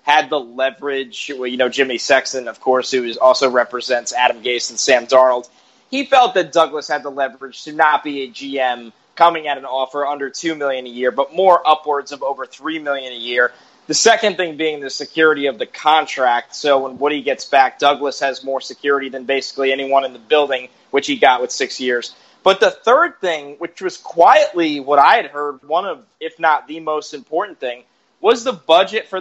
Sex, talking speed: male, 210 wpm